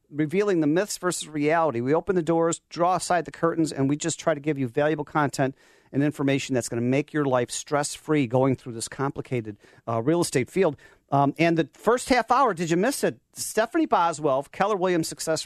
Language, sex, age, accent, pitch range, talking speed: English, male, 40-59, American, 135-175 Hz, 210 wpm